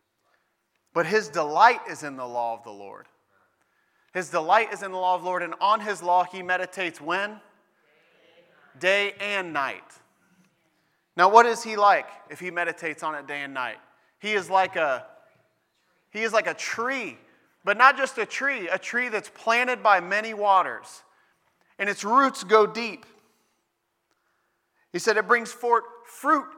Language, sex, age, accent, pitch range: Japanese, male, 30-49, American, 155-205 Hz